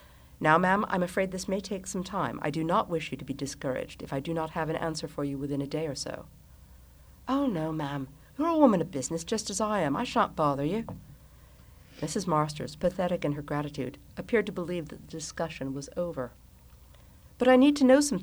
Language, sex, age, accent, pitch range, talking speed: English, female, 50-69, American, 135-185 Hz, 220 wpm